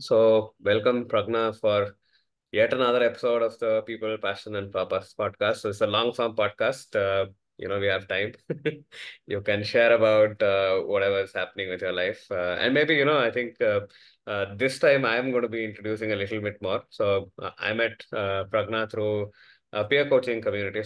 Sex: male